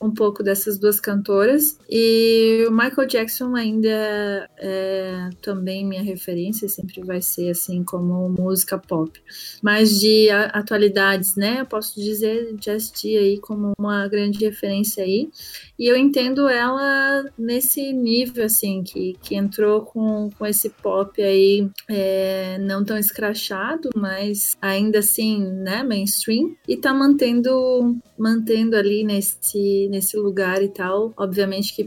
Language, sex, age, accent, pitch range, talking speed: Portuguese, female, 30-49, Brazilian, 195-230 Hz, 135 wpm